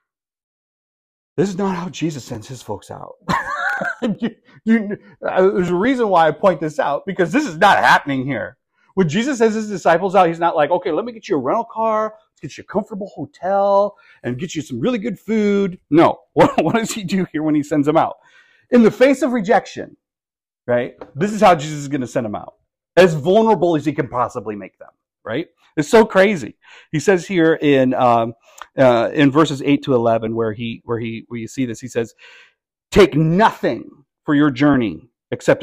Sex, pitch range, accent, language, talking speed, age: male, 130-200 Hz, American, English, 200 wpm, 40-59